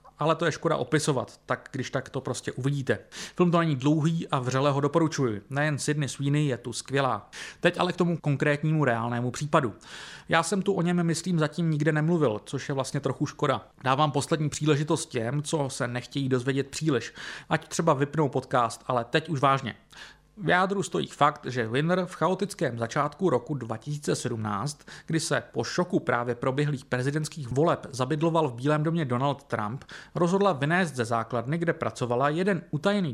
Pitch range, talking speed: 125-165 Hz, 175 wpm